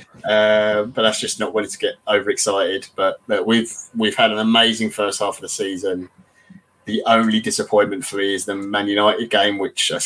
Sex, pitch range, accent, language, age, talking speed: male, 95-115 Hz, British, English, 20-39, 195 wpm